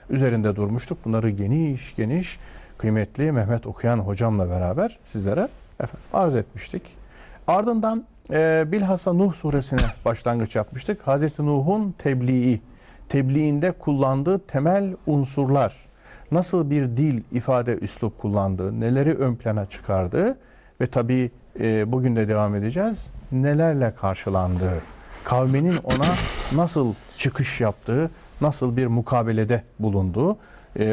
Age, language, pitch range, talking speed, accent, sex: 50-69, Turkish, 115-155 Hz, 110 wpm, native, male